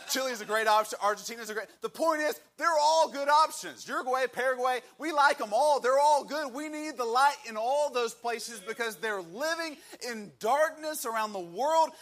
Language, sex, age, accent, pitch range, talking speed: English, male, 30-49, American, 185-255 Hz, 210 wpm